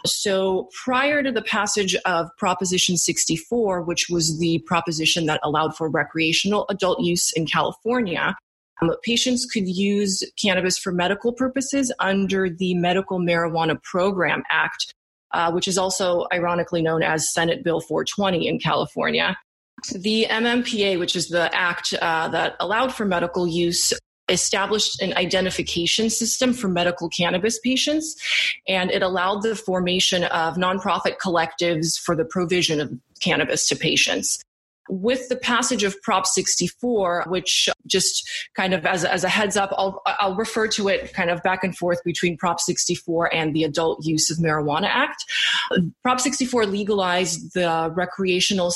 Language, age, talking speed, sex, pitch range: English, 20-39, 150 wpm, female, 175-215 Hz